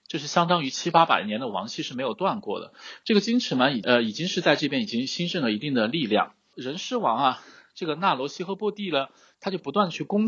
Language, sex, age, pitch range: Chinese, male, 20-39, 140-210 Hz